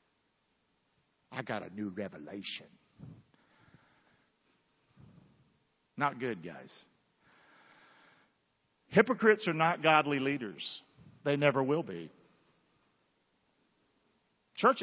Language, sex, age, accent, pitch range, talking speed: English, male, 50-69, American, 135-195 Hz, 75 wpm